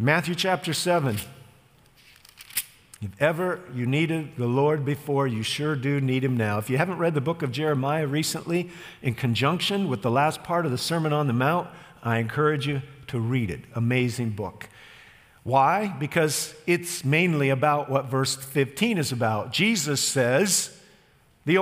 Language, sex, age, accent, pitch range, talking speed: English, male, 50-69, American, 130-180 Hz, 160 wpm